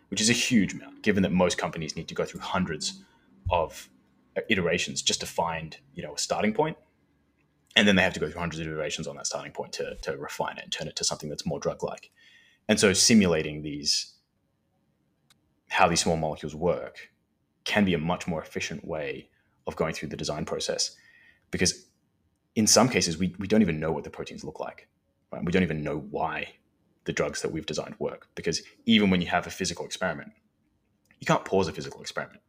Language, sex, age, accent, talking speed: English, male, 20-39, Australian, 205 wpm